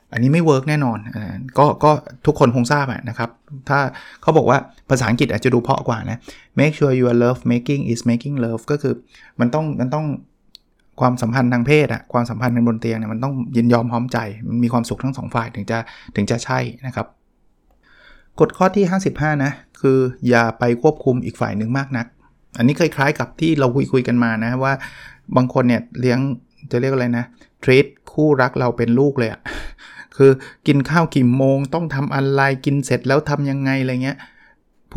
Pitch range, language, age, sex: 120-140 Hz, Thai, 20-39, male